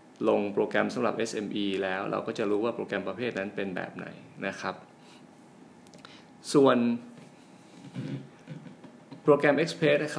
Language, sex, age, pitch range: Thai, male, 20-39, 100-130 Hz